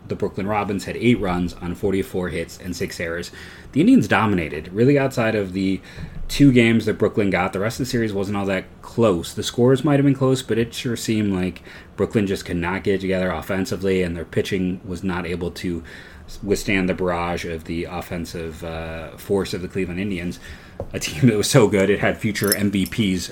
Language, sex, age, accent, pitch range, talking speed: English, male, 30-49, American, 90-110 Hz, 205 wpm